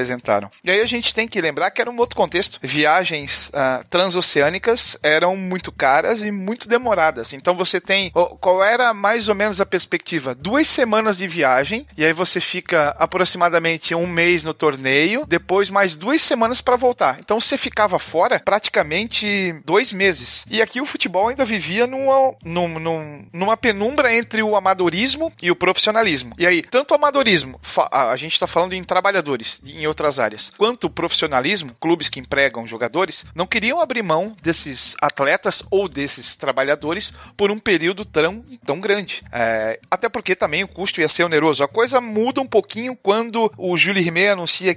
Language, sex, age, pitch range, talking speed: Portuguese, male, 40-59, 155-220 Hz, 170 wpm